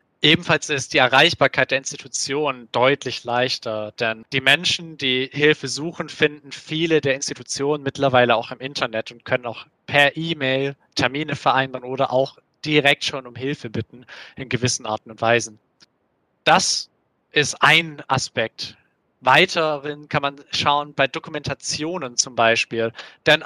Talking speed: 140 wpm